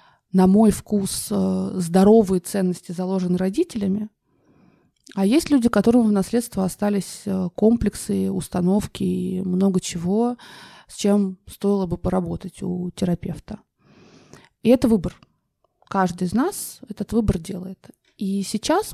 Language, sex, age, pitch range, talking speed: Russian, female, 20-39, 185-220 Hz, 115 wpm